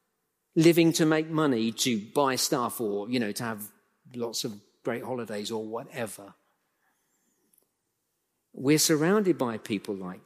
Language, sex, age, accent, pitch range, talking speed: English, male, 50-69, British, 130-190 Hz, 135 wpm